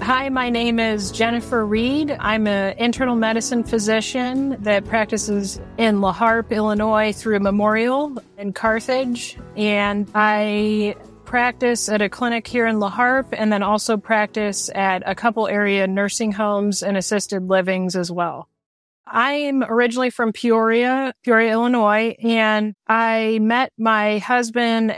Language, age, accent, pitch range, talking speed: English, 30-49, American, 205-230 Hz, 135 wpm